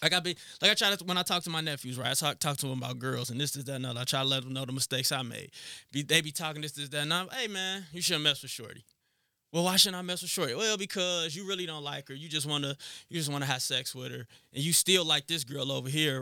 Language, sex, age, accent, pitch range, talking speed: English, male, 20-39, American, 140-180 Hz, 310 wpm